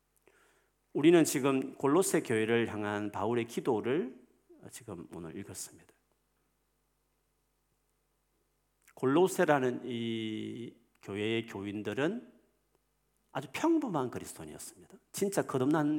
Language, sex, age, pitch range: Korean, male, 40-59, 95-140 Hz